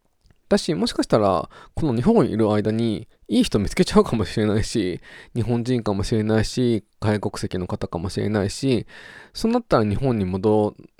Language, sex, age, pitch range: Japanese, male, 20-39, 100-145 Hz